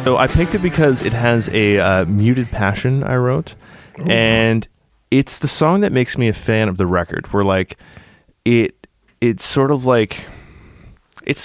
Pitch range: 95-115 Hz